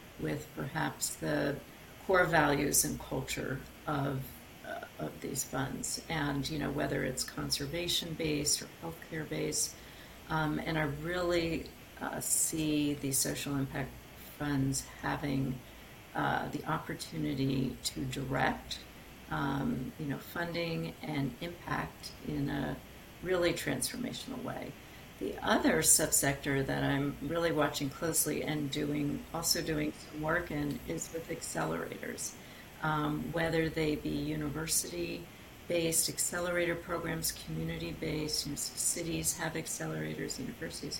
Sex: female